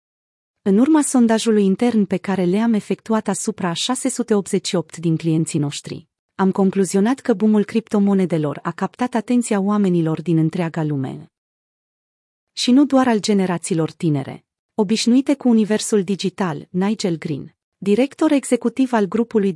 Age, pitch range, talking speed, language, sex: 30-49, 175-225 Hz, 130 wpm, Romanian, female